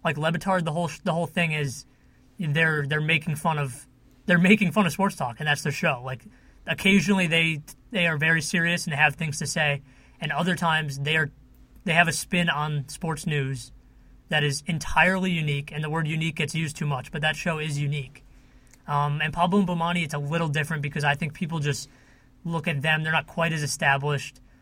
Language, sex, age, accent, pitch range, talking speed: English, male, 30-49, American, 145-170 Hz, 210 wpm